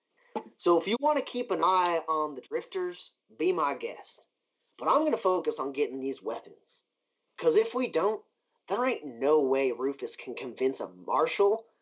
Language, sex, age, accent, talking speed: English, male, 30-49, American, 185 wpm